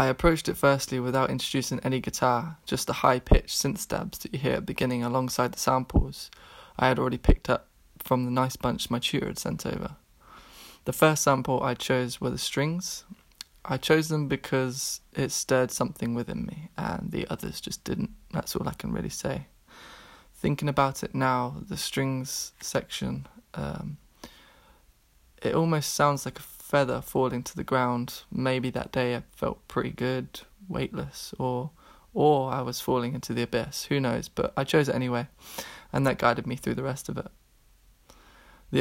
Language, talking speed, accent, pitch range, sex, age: English, 180 wpm, British, 125-135 Hz, male, 20-39